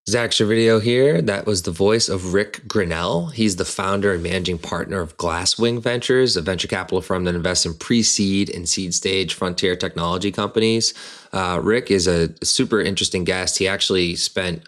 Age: 20-39